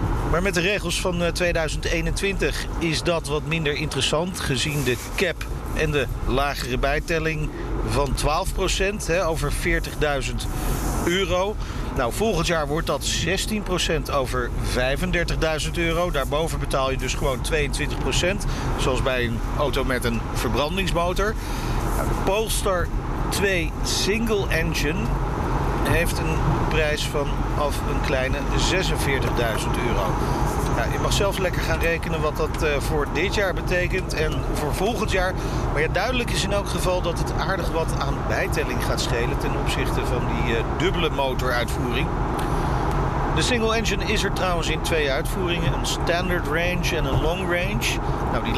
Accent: Dutch